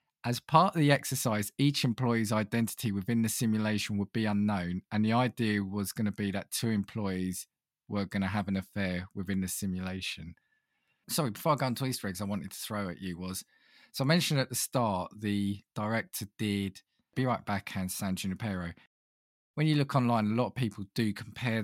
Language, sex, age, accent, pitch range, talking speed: English, male, 20-39, British, 100-120 Hz, 195 wpm